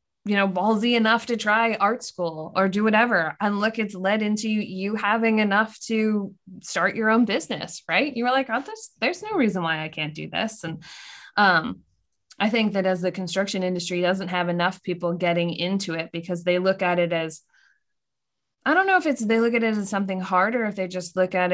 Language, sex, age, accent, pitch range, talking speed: English, female, 20-39, American, 180-220 Hz, 215 wpm